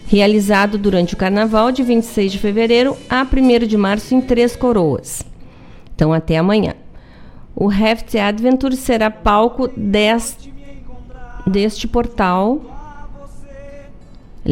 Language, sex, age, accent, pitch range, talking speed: Portuguese, female, 50-69, Brazilian, 180-235 Hz, 110 wpm